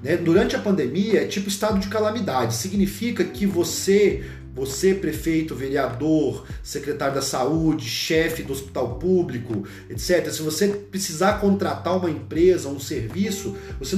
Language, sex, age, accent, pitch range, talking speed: Portuguese, male, 40-59, Brazilian, 135-215 Hz, 135 wpm